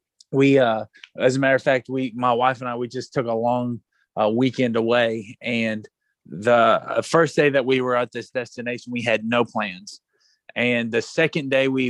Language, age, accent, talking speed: English, 30-49, American, 195 wpm